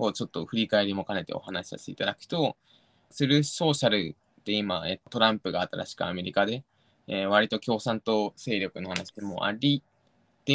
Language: Japanese